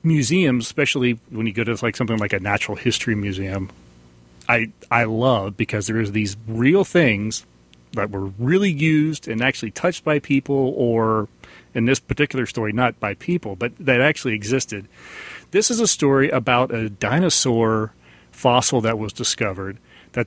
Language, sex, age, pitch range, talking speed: English, male, 40-59, 110-140 Hz, 165 wpm